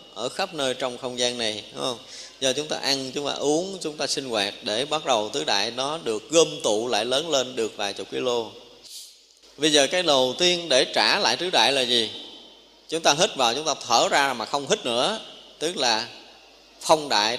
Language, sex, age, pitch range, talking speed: Vietnamese, male, 20-39, 115-160 Hz, 220 wpm